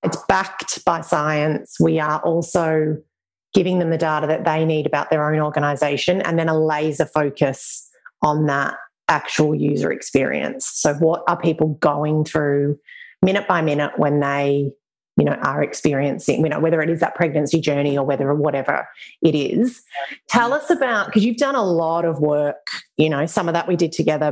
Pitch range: 145-170 Hz